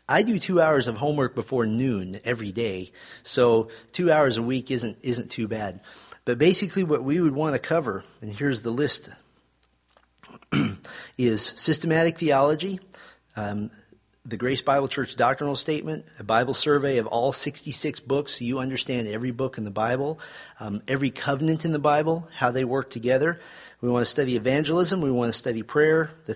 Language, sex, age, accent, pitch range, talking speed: English, male, 40-59, American, 115-145 Hz, 175 wpm